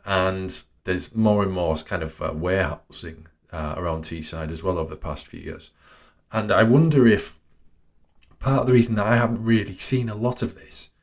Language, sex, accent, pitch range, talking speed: English, male, British, 80-110 Hz, 195 wpm